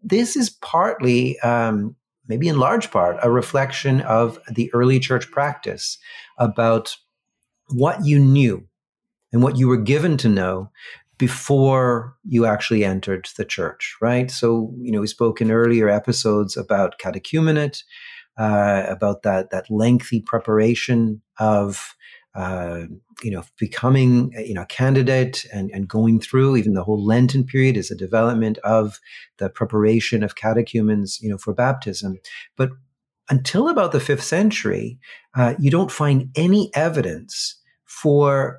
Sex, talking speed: male, 145 wpm